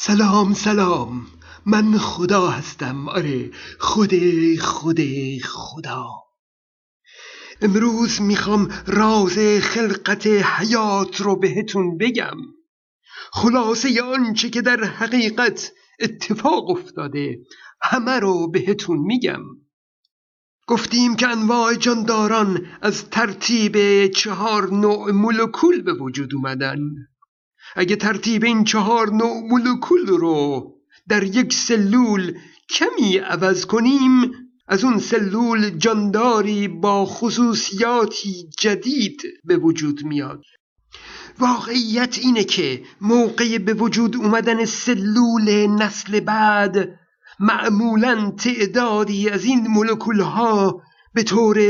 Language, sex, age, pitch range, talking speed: Persian, male, 50-69, 195-235 Hz, 95 wpm